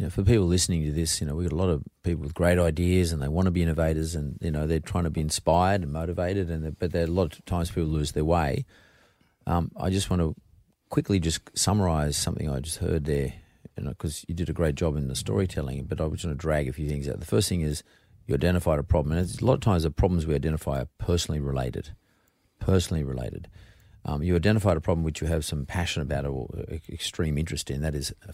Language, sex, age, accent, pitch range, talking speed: English, male, 40-59, Australian, 75-95 Hz, 255 wpm